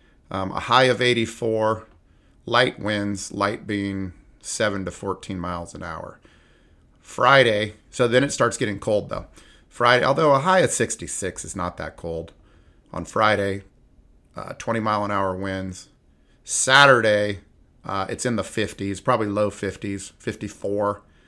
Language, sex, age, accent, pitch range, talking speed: English, male, 30-49, American, 90-110 Hz, 145 wpm